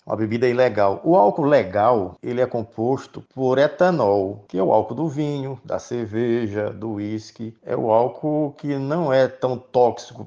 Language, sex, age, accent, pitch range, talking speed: Portuguese, male, 50-69, Brazilian, 105-130 Hz, 170 wpm